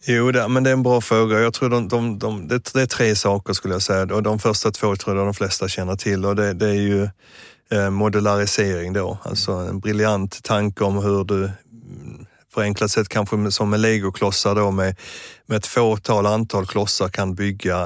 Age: 30-49